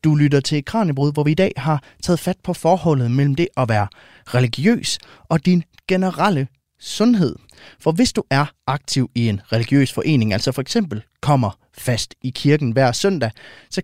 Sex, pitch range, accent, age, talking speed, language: male, 120-160 Hz, native, 30-49, 180 wpm, Danish